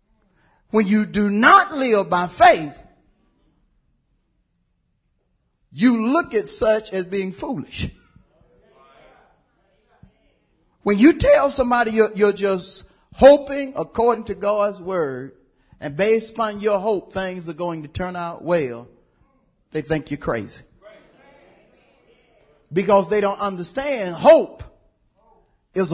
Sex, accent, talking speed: male, American, 110 wpm